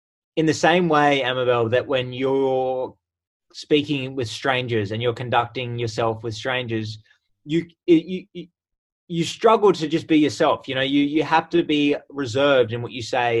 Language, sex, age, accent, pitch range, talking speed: English, male, 20-39, Australian, 115-155 Hz, 165 wpm